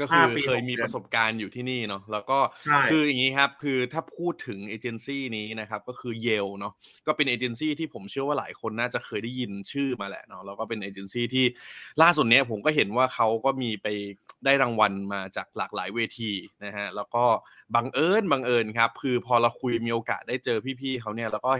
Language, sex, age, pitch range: Thai, male, 20-39, 110-140 Hz